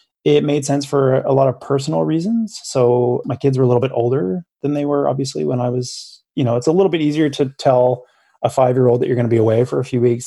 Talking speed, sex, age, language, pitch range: 265 wpm, male, 20-39, English, 120-145 Hz